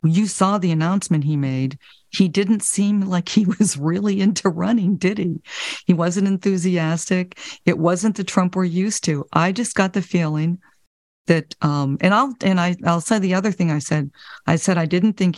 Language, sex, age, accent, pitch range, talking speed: English, female, 50-69, American, 160-190 Hz, 195 wpm